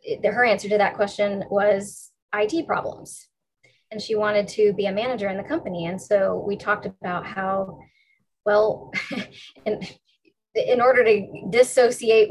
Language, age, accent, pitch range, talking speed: English, 10-29, American, 195-215 Hz, 145 wpm